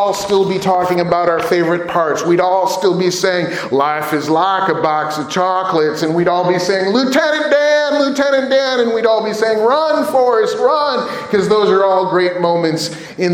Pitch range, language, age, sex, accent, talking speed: 170-225 Hz, English, 30-49, male, American, 195 wpm